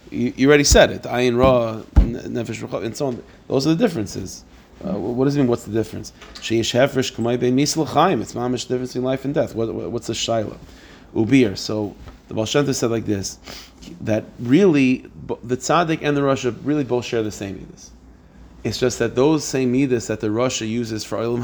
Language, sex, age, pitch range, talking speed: English, male, 30-49, 110-130 Hz, 190 wpm